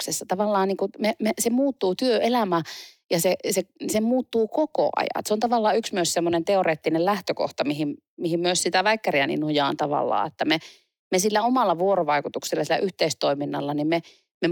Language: Finnish